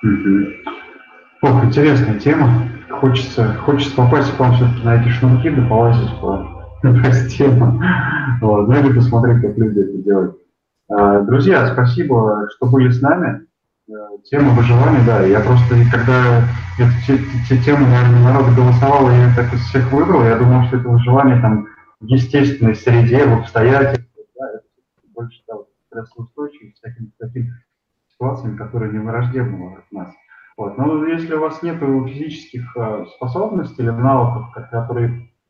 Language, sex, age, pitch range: Russian, male, 20-39, 110-130 Hz